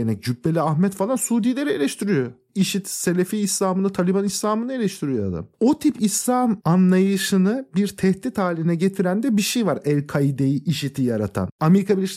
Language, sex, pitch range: Turkish, male, 160-205 Hz